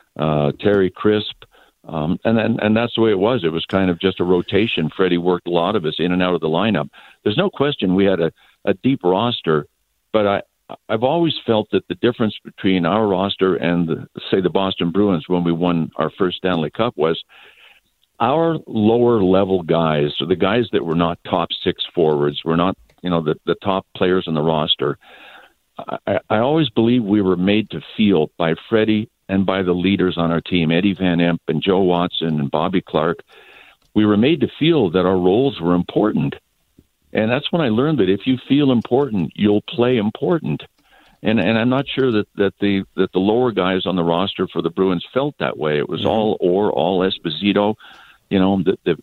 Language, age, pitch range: English, 60-79, 85-110 Hz